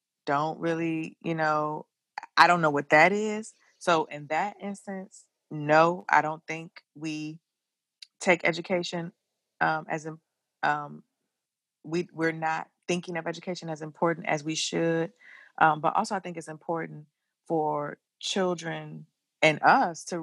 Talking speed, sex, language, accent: 135 wpm, female, English, American